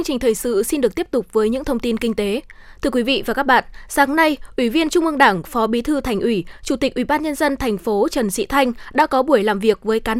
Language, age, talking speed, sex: Vietnamese, 20-39, 290 wpm, female